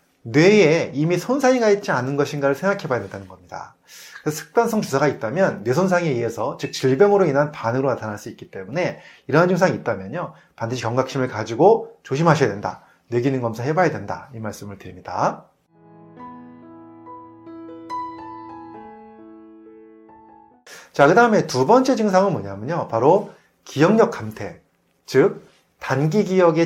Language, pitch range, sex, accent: Korean, 115-185 Hz, male, native